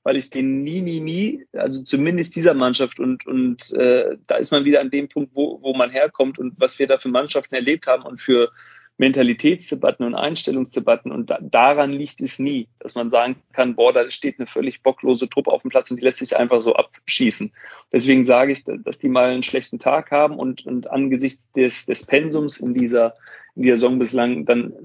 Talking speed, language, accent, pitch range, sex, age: 210 wpm, German, German, 125-150 Hz, male, 40-59